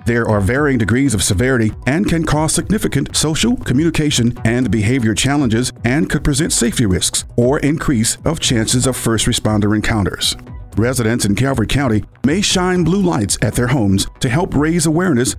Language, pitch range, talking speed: English, 110-145 Hz, 170 wpm